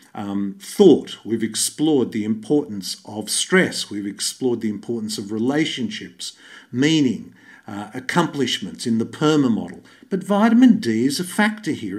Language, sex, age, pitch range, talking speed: English, male, 50-69, 135-215 Hz, 140 wpm